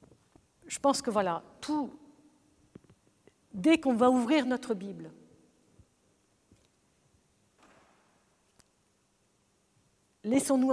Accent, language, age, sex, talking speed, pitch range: French, French, 50-69, female, 65 wpm, 205-255 Hz